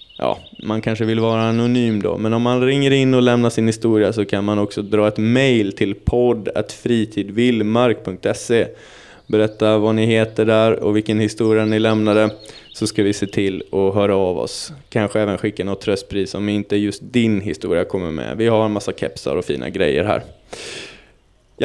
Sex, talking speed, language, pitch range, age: male, 185 wpm, English, 110-130 Hz, 20-39